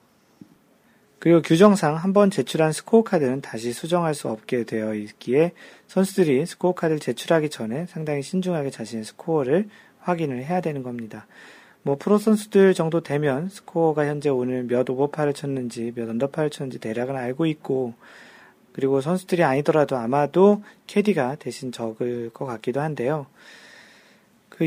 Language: Korean